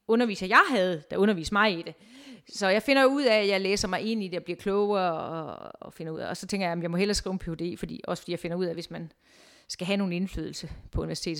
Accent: native